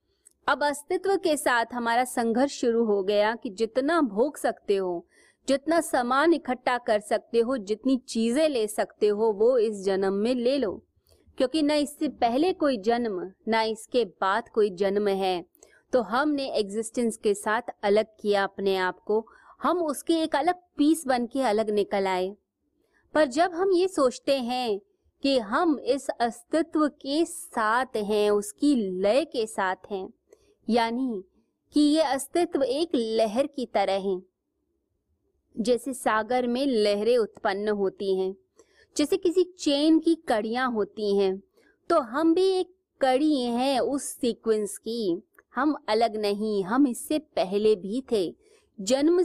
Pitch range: 215-300 Hz